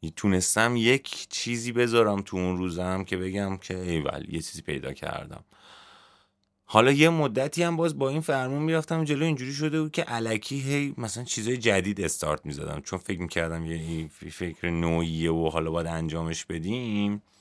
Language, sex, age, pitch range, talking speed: Persian, male, 30-49, 85-120 Hz, 165 wpm